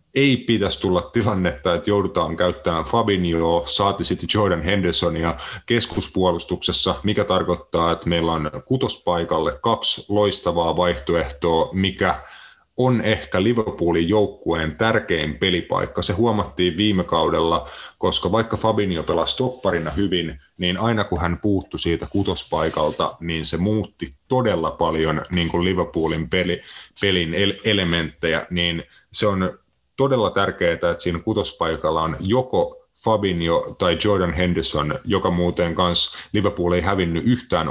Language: Finnish